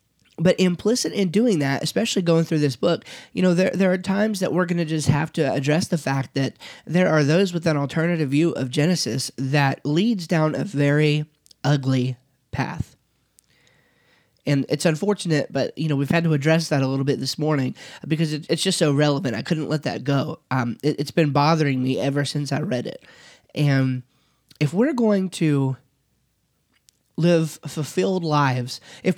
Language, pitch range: English, 140-180 Hz